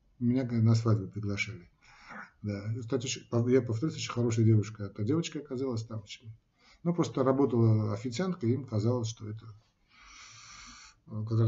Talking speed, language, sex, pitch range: 130 wpm, Russian, male, 110-130 Hz